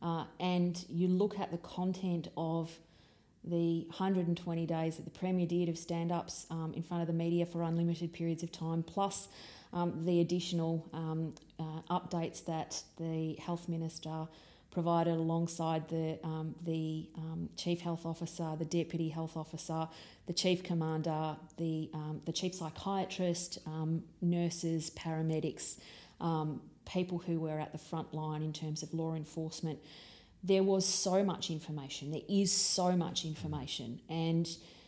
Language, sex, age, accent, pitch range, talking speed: English, female, 30-49, Australian, 160-175 Hz, 150 wpm